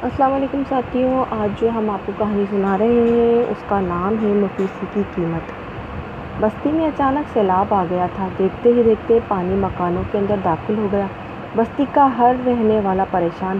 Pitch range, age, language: 185-230 Hz, 20-39, Urdu